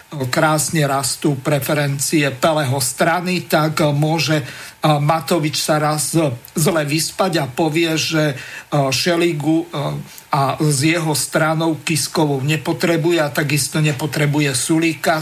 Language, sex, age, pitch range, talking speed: Slovak, male, 50-69, 145-170 Hz, 105 wpm